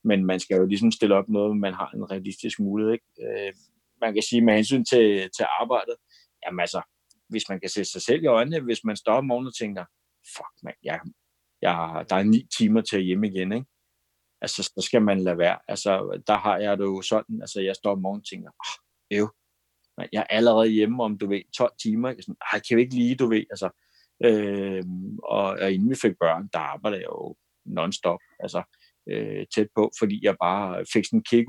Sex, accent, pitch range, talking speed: male, native, 100-120 Hz, 215 wpm